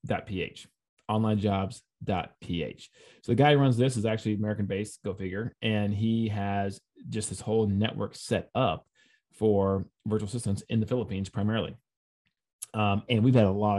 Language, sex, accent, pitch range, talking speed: English, male, American, 100-120 Hz, 160 wpm